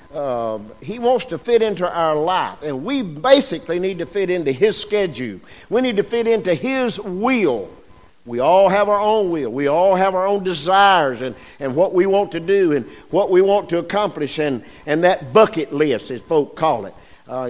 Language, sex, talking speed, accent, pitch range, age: English, male, 200 wpm, American, 150-210 Hz, 50-69